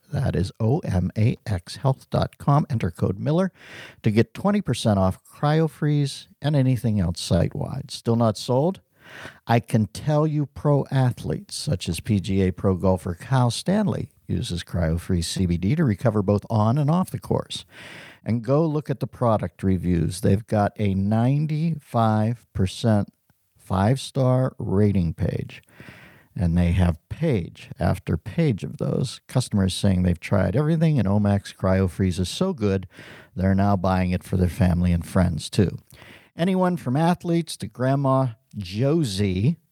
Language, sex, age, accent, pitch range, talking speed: English, male, 50-69, American, 95-145 Hz, 135 wpm